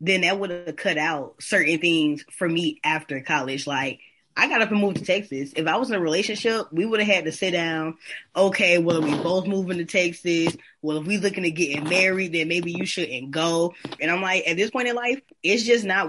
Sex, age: female, 20-39